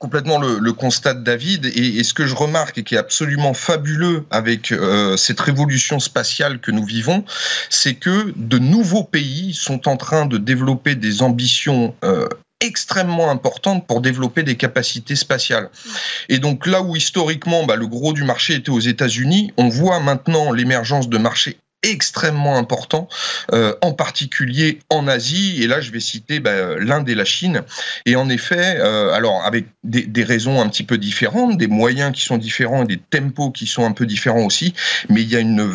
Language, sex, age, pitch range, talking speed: French, male, 30-49, 120-155 Hz, 190 wpm